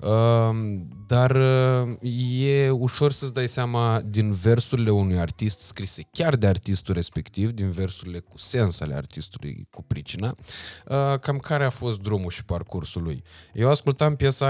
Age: 20-39